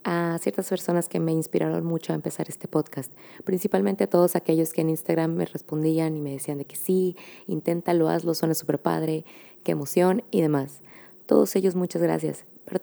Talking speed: 185 wpm